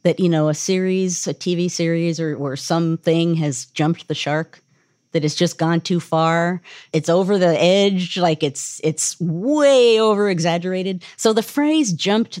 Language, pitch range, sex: English, 155-220 Hz, female